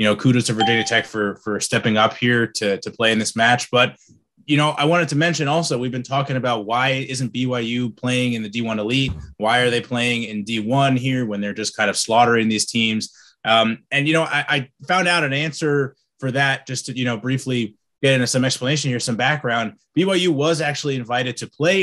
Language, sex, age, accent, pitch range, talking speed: English, male, 20-39, American, 115-145 Hz, 225 wpm